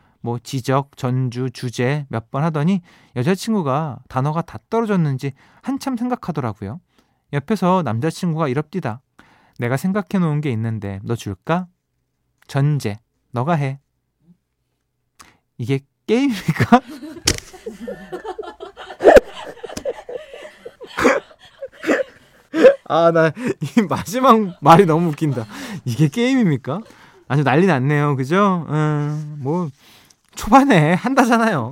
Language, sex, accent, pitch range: Korean, male, native, 130-195 Hz